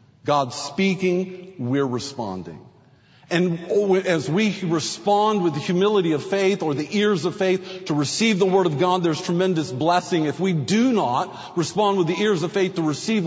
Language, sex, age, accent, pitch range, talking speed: English, male, 50-69, American, 155-195 Hz, 175 wpm